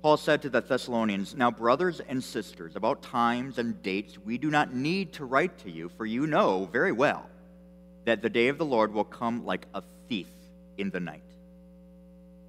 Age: 50-69